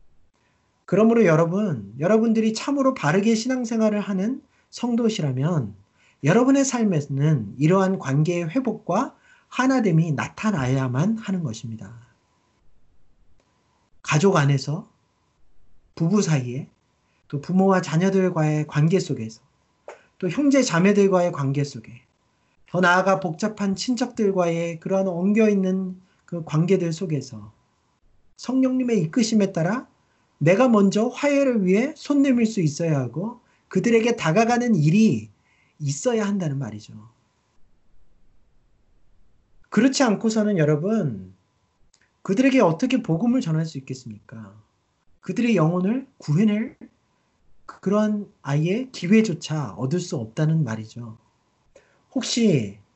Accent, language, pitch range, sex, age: native, Korean, 135-220 Hz, male, 40-59